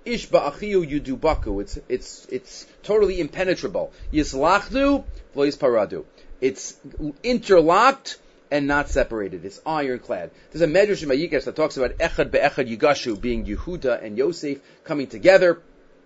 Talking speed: 110 wpm